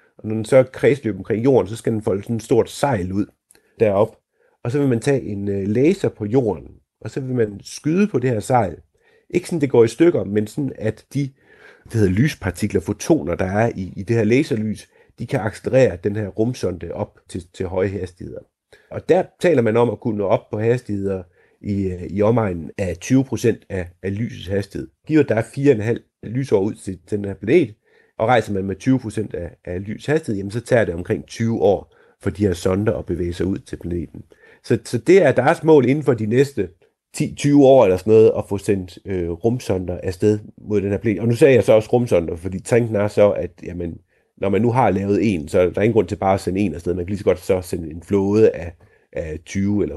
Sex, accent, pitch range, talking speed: male, native, 95-120 Hz, 230 wpm